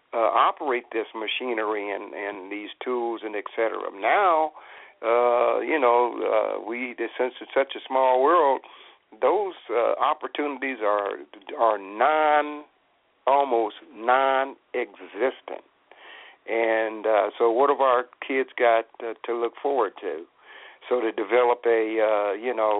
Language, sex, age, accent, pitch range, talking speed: English, male, 60-79, American, 110-130 Hz, 135 wpm